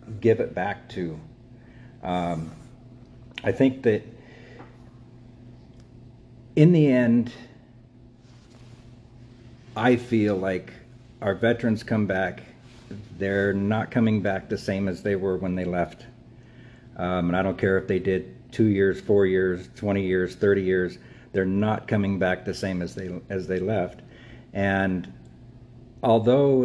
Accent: American